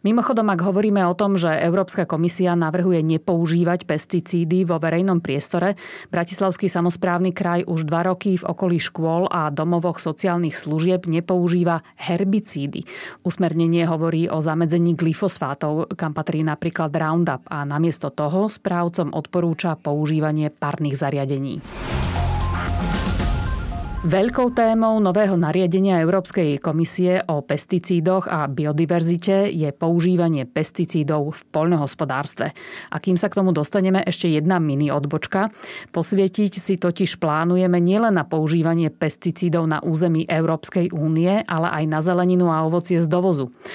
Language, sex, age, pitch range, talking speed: Slovak, female, 30-49, 155-180 Hz, 125 wpm